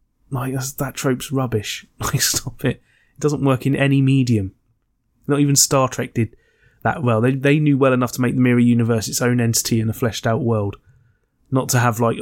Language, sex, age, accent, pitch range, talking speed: English, male, 20-39, British, 120-140 Hz, 200 wpm